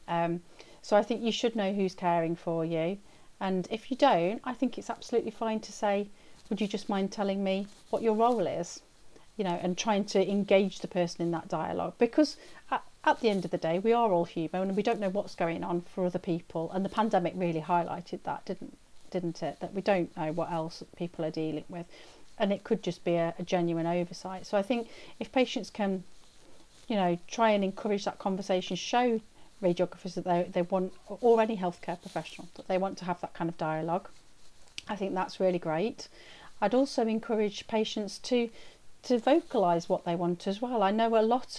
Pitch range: 175-220 Hz